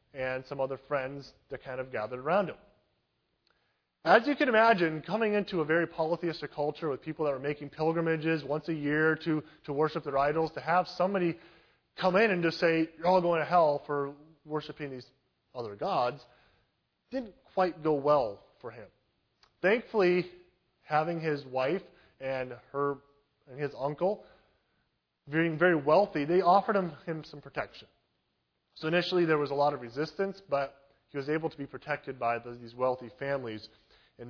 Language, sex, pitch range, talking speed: English, male, 135-165 Hz, 170 wpm